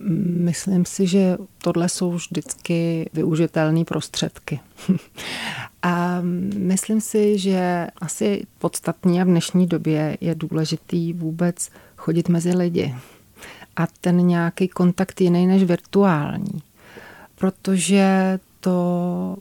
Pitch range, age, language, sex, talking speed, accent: 165-190 Hz, 30-49, Czech, female, 105 wpm, native